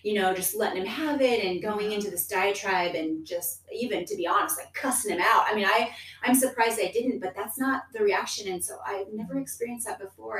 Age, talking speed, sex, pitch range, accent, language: 30-49, 235 wpm, female, 160-220 Hz, American, English